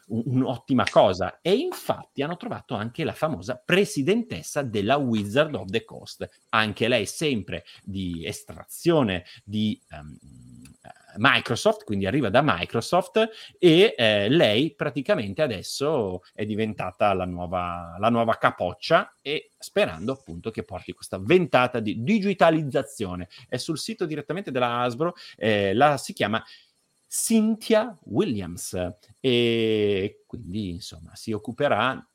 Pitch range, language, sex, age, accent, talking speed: 95-145 Hz, Italian, male, 30-49, native, 120 wpm